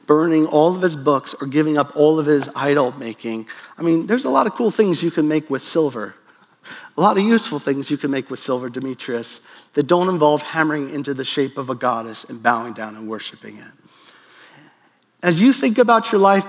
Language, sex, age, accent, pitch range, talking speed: English, male, 40-59, American, 150-225 Hz, 215 wpm